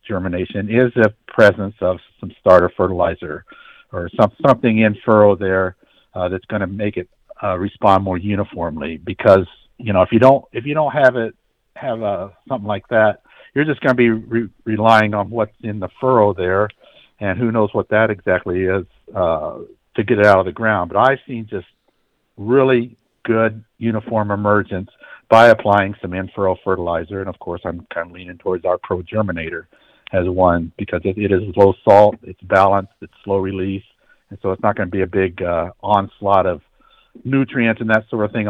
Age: 50-69